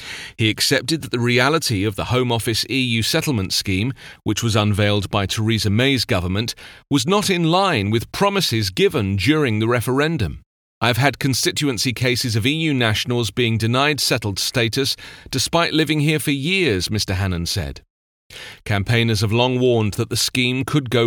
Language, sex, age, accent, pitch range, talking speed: English, male, 40-59, British, 110-145 Hz, 165 wpm